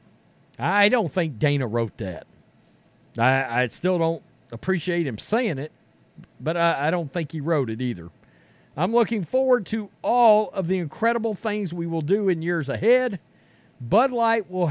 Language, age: English, 50-69